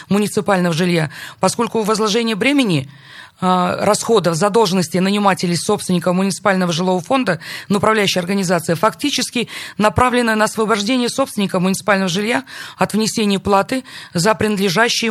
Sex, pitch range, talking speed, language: female, 180-215 Hz, 110 wpm, Russian